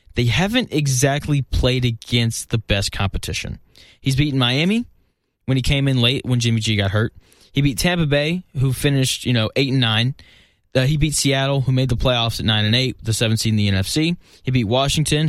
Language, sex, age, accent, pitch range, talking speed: English, male, 20-39, American, 105-135 Hz, 210 wpm